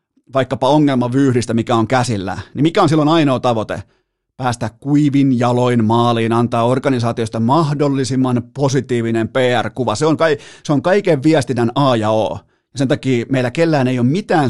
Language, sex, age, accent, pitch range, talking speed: Finnish, male, 30-49, native, 120-145 Hz, 140 wpm